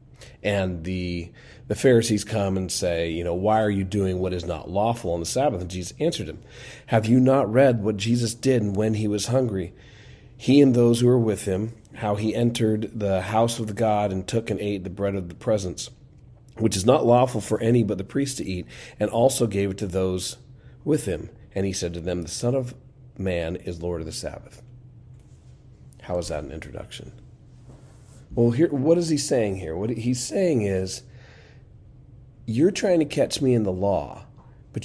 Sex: male